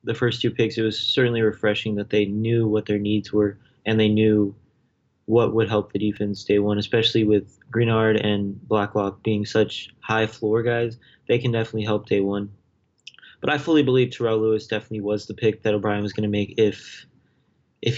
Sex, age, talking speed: male, 20-39, 195 wpm